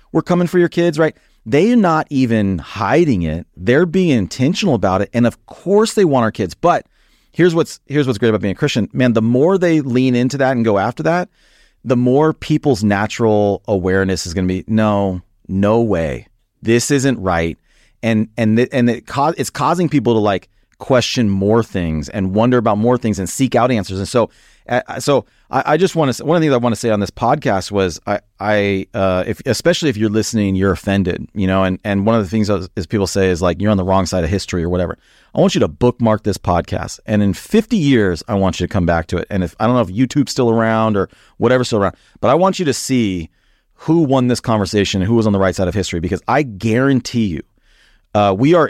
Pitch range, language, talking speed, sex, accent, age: 100-135 Hz, English, 235 wpm, male, American, 30-49